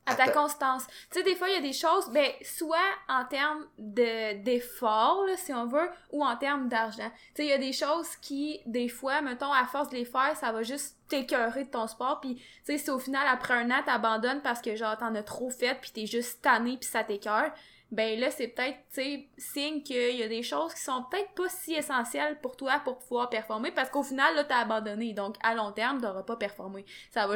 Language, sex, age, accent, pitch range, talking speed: French, female, 20-39, Canadian, 220-275 Hz, 245 wpm